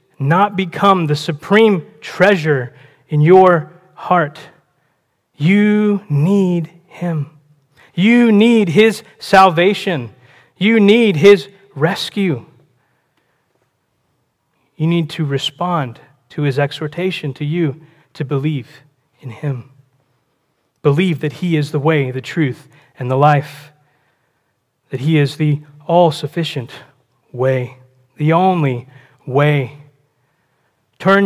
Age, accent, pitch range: 30-49, American, 135-165 Hz